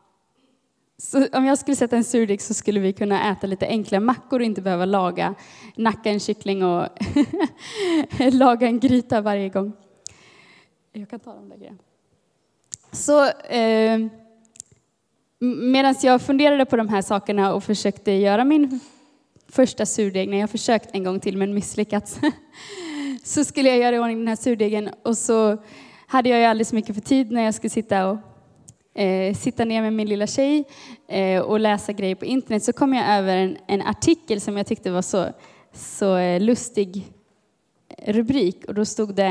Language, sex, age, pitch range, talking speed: Swedish, female, 20-39, 200-260 Hz, 170 wpm